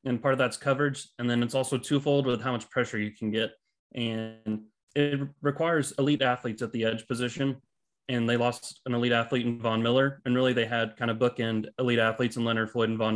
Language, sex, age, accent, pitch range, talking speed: English, male, 20-39, American, 115-130 Hz, 225 wpm